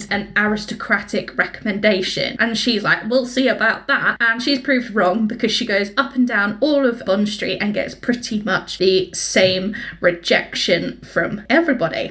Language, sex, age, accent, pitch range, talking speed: English, female, 20-39, British, 210-255 Hz, 165 wpm